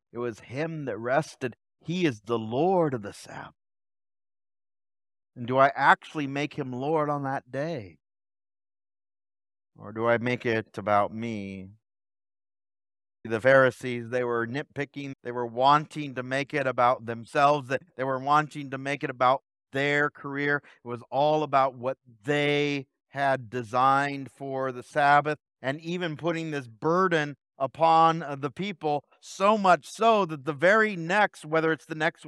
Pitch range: 120-170 Hz